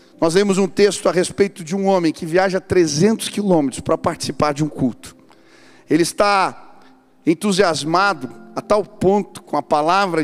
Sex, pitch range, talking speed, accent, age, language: male, 145-205 Hz, 160 wpm, Brazilian, 40-59, Portuguese